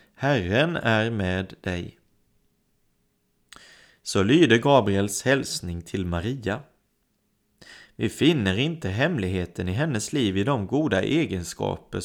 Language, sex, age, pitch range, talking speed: Swedish, male, 30-49, 100-130 Hz, 105 wpm